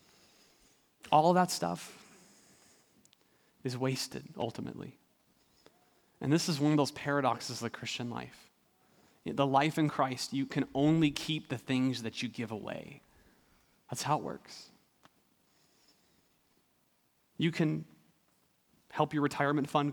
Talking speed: 125 wpm